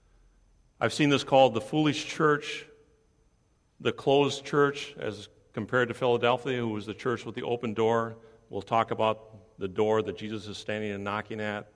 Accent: American